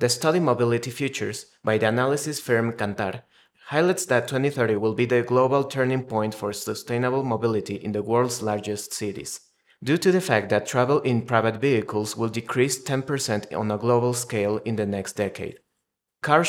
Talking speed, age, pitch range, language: 170 wpm, 30-49, 110-135 Hz, English